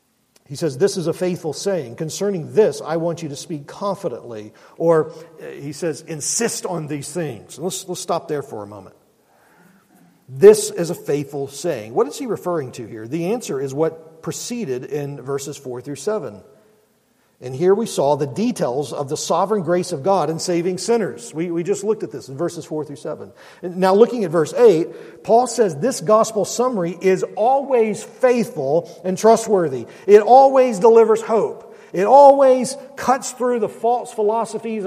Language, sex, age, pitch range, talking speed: English, male, 50-69, 160-230 Hz, 180 wpm